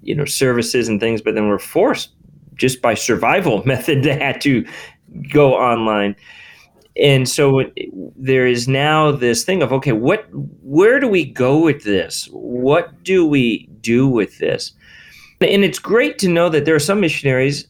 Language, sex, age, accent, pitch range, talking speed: English, male, 40-59, American, 120-155 Hz, 165 wpm